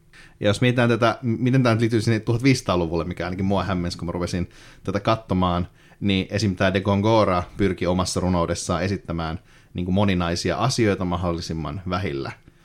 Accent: native